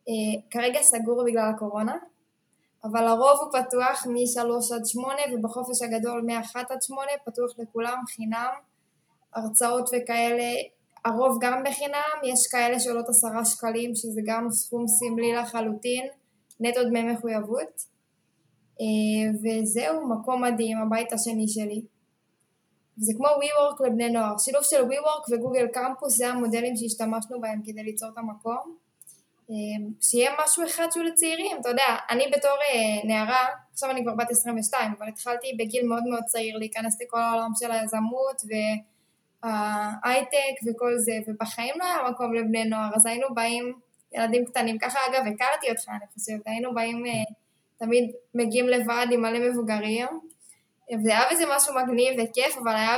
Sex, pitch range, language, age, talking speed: female, 225-255 Hz, Hebrew, 10-29, 145 wpm